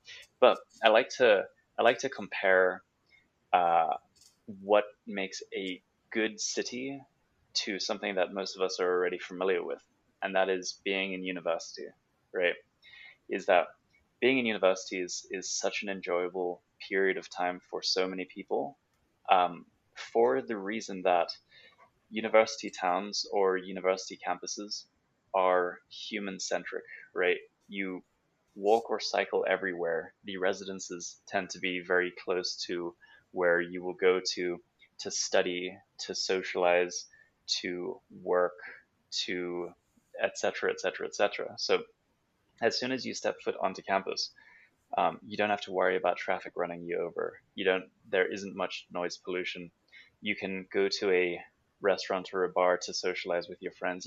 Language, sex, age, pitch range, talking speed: English, male, 20-39, 90-105 Hz, 145 wpm